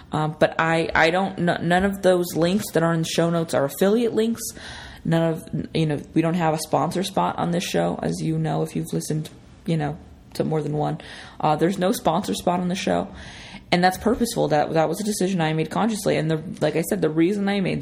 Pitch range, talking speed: 155-180 Hz, 240 wpm